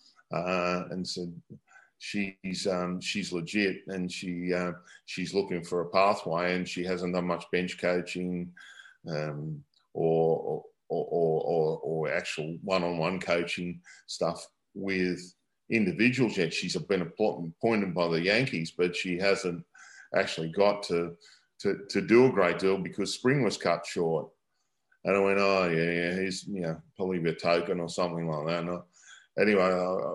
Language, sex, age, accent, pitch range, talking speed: English, male, 40-59, Australian, 85-95 Hz, 150 wpm